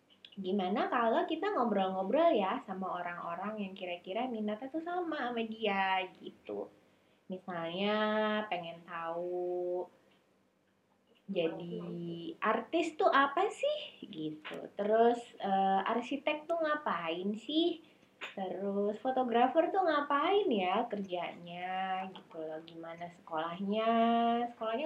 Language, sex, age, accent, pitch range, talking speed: Indonesian, female, 20-39, native, 175-250 Hz, 95 wpm